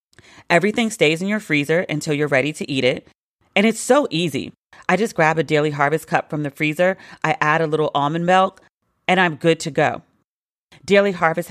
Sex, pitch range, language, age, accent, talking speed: female, 155-200 Hz, English, 40-59, American, 200 wpm